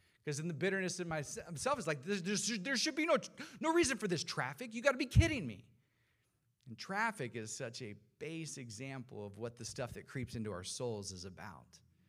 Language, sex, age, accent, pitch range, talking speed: English, male, 40-59, American, 125-185 Hz, 205 wpm